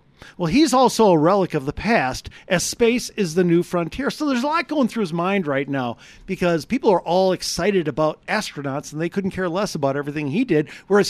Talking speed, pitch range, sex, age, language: 220 wpm, 145-215 Hz, male, 50-69, English